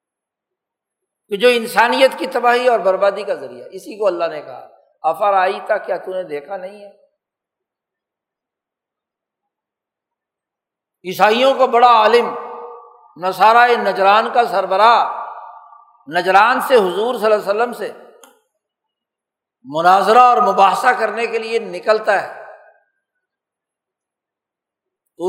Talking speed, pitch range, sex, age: 110 wpm, 175-245 Hz, male, 60-79